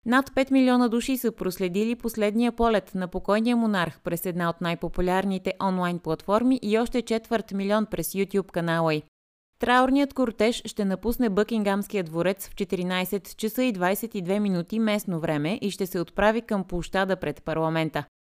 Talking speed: 155 wpm